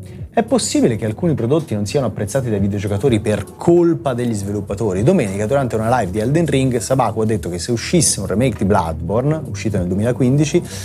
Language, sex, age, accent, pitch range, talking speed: Italian, male, 30-49, native, 100-130 Hz, 190 wpm